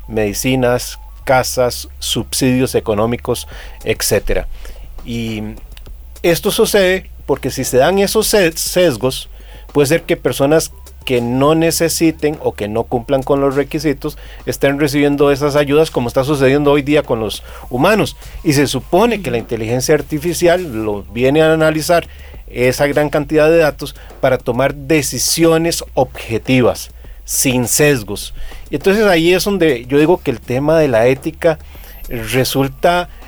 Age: 40-59